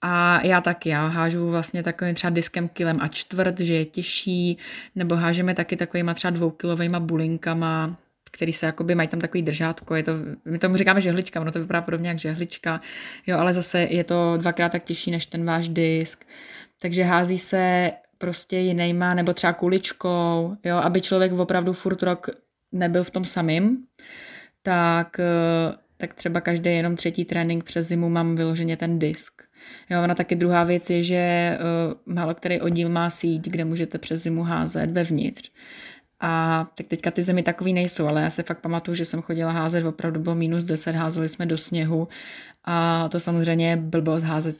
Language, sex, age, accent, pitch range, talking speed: Czech, female, 20-39, native, 165-175 Hz, 175 wpm